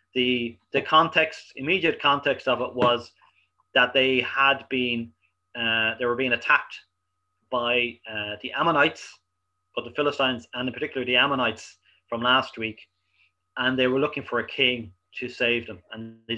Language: English